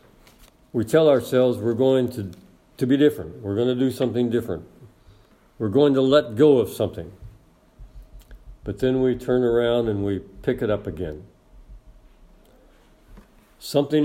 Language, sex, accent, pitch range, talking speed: English, male, American, 105-135 Hz, 145 wpm